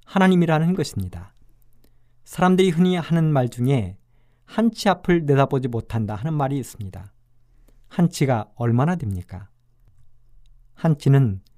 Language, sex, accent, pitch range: Korean, male, native, 120-170 Hz